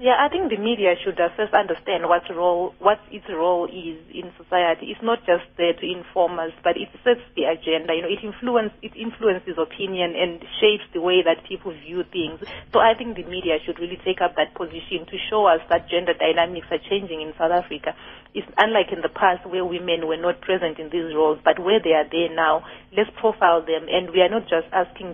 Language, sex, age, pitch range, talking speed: English, female, 40-59, 165-195 Hz, 225 wpm